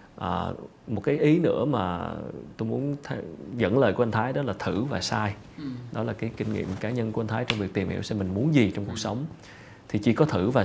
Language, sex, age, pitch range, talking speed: Vietnamese, male, 20-39, 100-120 Hz, 255 wpm